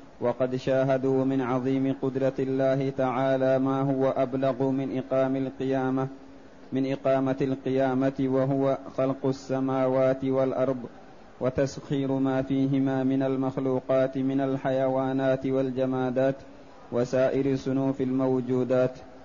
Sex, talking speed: male, 95 wpm